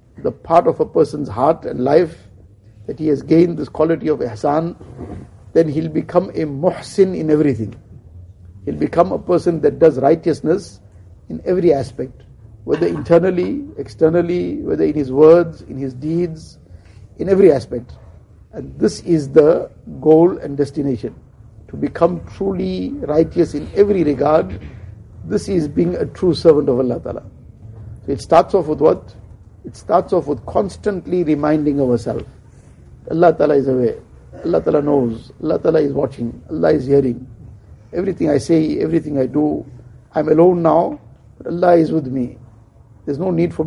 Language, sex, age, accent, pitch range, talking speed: English, male, 60-79, Indian, 120-170 Hz, 150 wpm